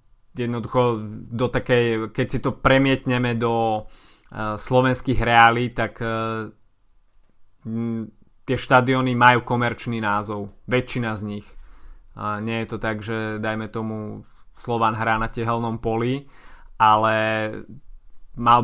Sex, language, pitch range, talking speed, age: male, Slovak, 110-120 Hz, 120 wpm, 20-39